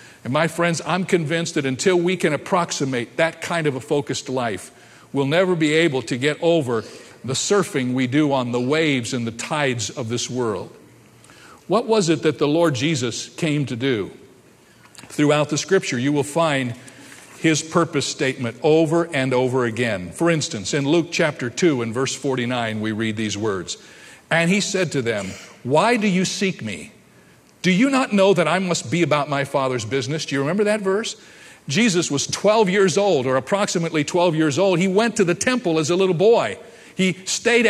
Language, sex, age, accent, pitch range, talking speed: English, male, 50-69, American, 140-195 Hz, 190 wpm